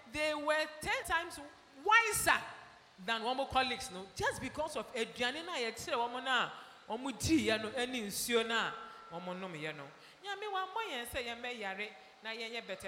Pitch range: 210-335 Hz